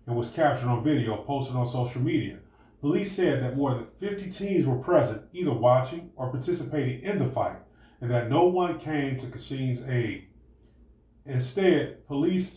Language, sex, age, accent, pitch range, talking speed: English, male, 30-49, American, 120-145 Hz, 165 wpm